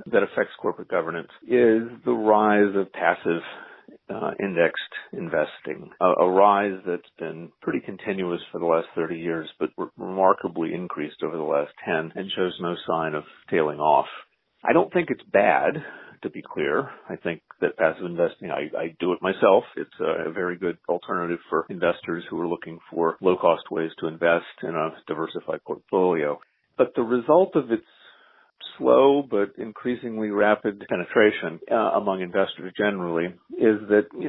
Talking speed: 160 wpm